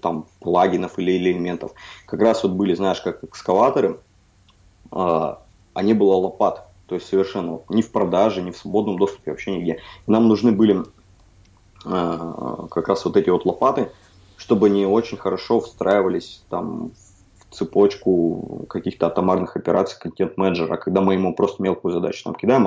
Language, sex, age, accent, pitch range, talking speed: Russian, male, 20-39, native, 90-105 Hz, 150 wpm